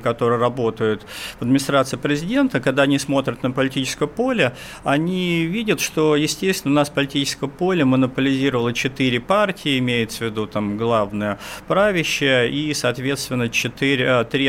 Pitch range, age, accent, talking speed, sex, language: 115-150 Hz, 50-69, native, 130 wpm, male, Russian